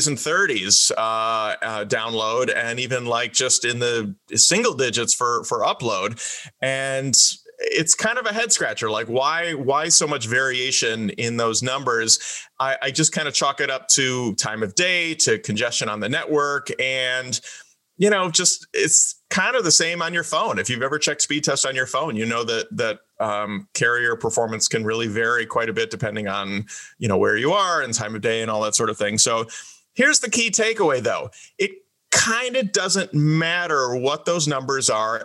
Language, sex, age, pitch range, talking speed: English, male, 30-49, 120-165 Hz, 195 wpm